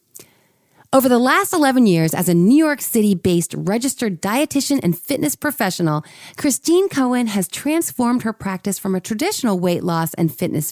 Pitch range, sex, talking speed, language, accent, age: 180-270 Hz, female, 155 wpm, English, American, 30-49